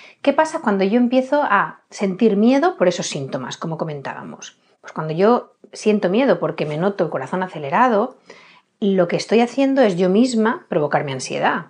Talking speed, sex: 175 wpm, female